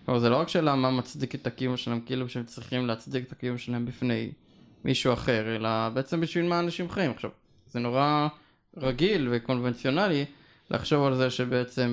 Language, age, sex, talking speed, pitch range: Hebrew, 20-39, male, 175 wpm, 120-145 Hz